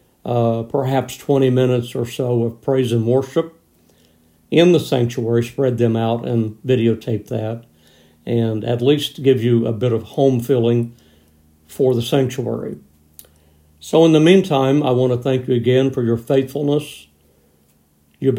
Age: 60-79